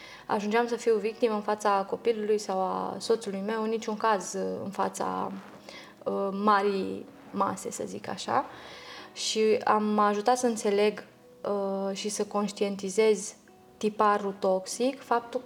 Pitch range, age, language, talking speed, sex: 195-220 Hz, 20-39, Romanian, 130 wpm, female